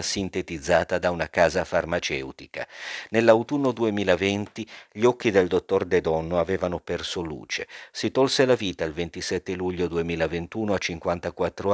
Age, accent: 50-69, native